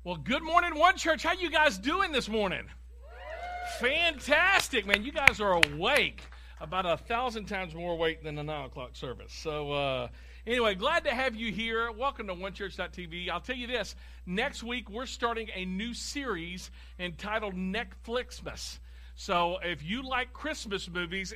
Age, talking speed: 50-69, 160 wpm